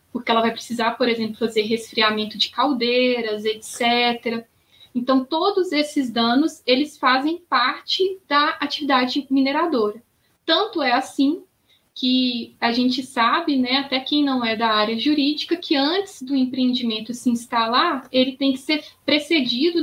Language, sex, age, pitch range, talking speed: Portuguese, female, 10-29, 245-295 Hz, 140 wpm